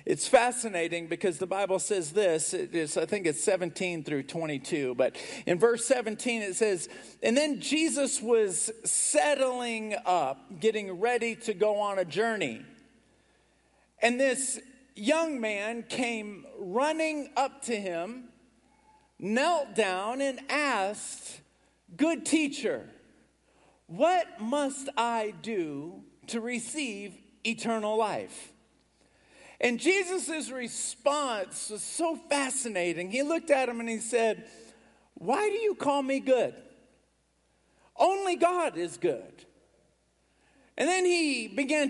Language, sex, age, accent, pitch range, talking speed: English, male, 50-69, American, 215-290 Hz, 115 wpm